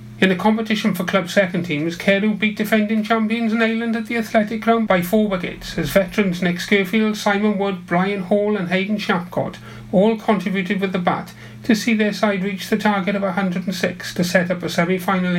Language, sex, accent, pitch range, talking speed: English, male, British, 170-210 Hz, 195 wpm